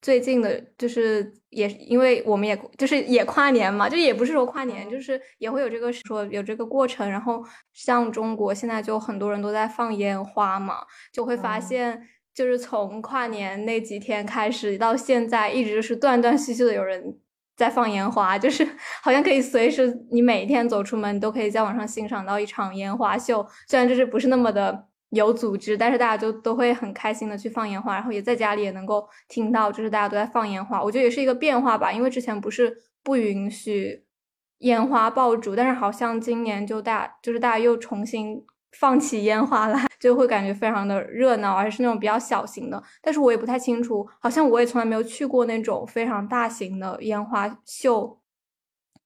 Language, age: Chinese, 10-29